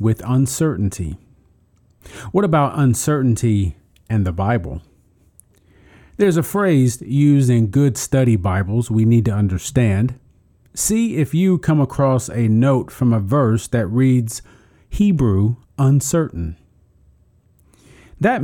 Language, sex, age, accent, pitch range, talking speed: English, male, 40-59, American, 100-135 Hz, 115 wpm